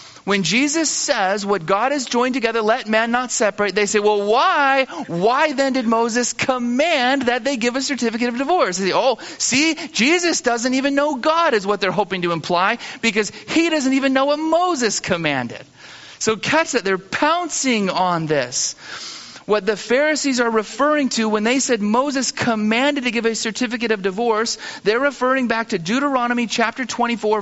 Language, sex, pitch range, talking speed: English, male, 200-260 Hz, 175 wpm